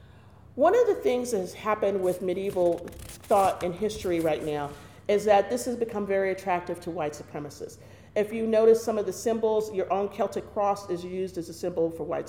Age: 40-59